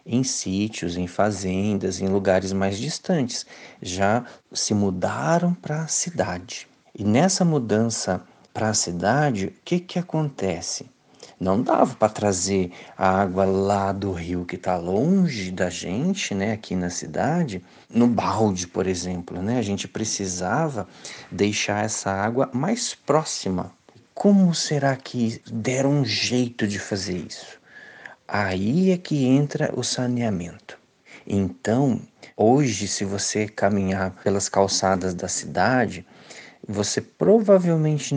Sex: male